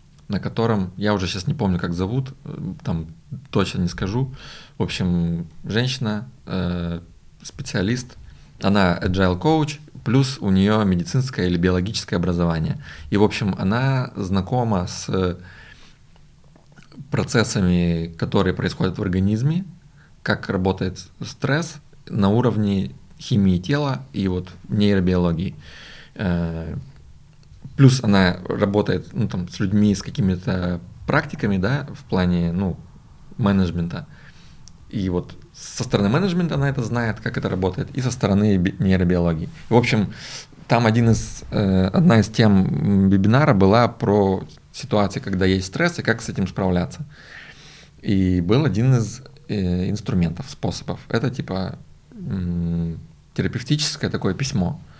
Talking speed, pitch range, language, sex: 120 wpm, 90-130 Hz, Russian, male